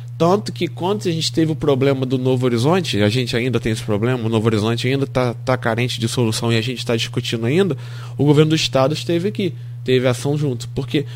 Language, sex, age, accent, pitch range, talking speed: Portuguese, male, 20-39, Brazilian, 120-155 Hz, 220 wpm